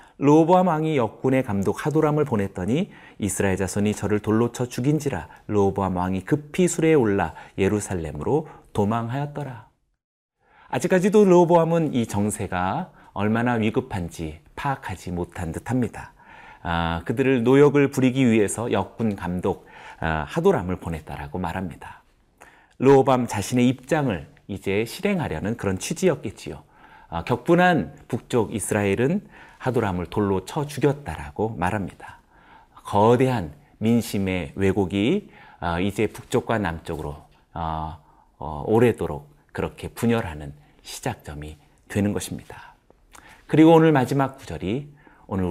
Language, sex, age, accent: Korean, male, 40-59, native